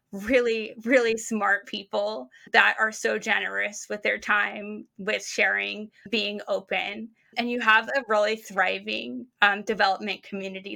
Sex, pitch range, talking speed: female, 205-235 Hz, 135 wpm